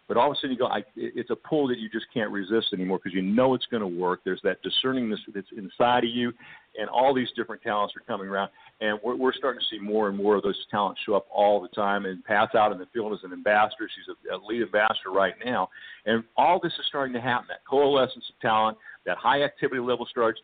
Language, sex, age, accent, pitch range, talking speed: English, male, 50-69, American, 105-130 Hz, 250 wpm